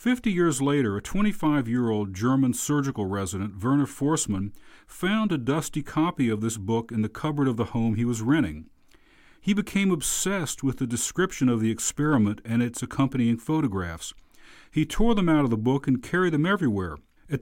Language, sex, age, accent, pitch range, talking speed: English, male, 40-59, American, 115-150 Hz, 175 wpm